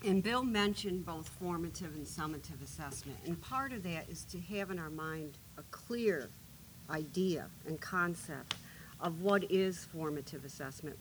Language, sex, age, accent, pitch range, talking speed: English, female, 50-69, American, 155-205 Hz, 155 wpm